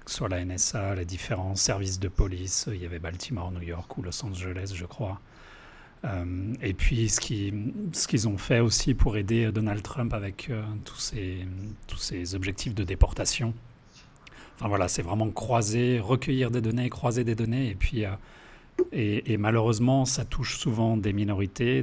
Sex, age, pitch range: male, 40-59, 95-120 Hz